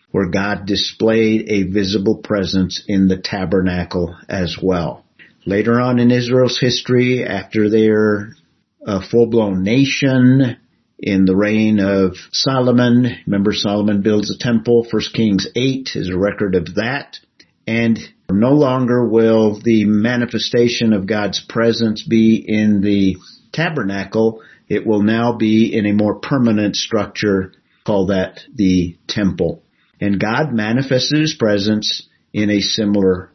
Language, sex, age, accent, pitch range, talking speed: English, male, 50-69, American, 105-125 Hz, 130 wpm